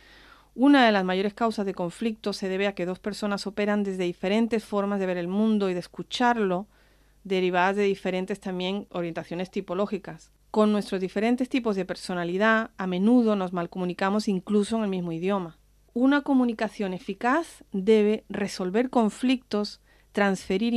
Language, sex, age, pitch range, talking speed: English, female, 40-59, 180-220 Hz, 150 wpm